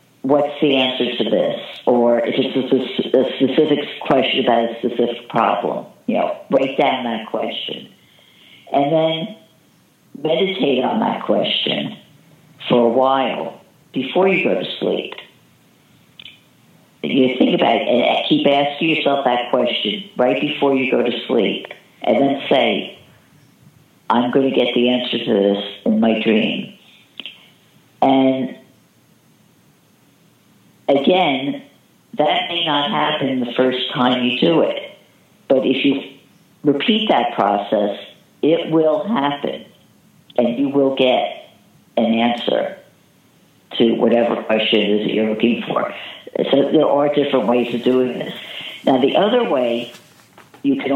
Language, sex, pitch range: English, female, 120-145 Hz